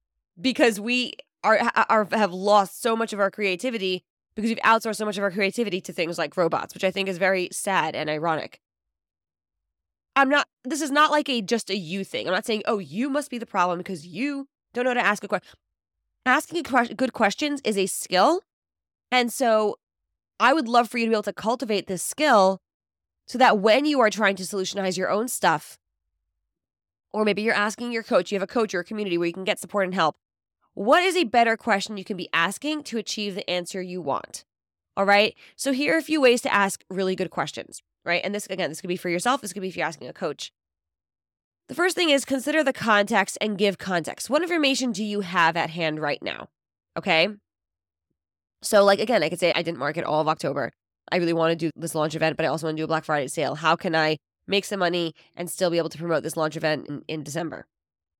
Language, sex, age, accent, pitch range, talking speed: English, female, 20-39, American, 165-230 Hz, 230 wpm